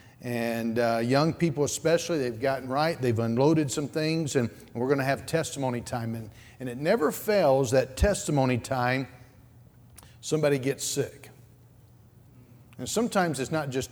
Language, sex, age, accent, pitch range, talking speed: English, male, 50-69, American, 120-150 Hz, 150 wpm